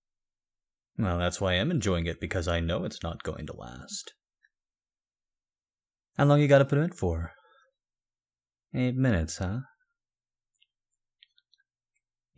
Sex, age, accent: male, 30-49, American